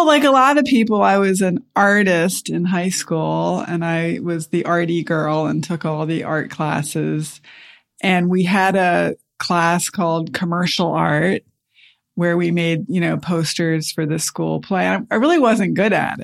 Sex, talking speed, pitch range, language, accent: female, 175 wpm, 160-205 Hz, English, American